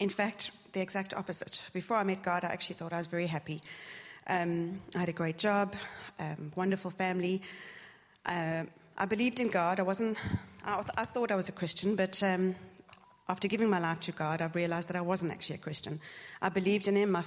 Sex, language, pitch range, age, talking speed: female, English, 165-190 Hz, 30-49, 205 wpm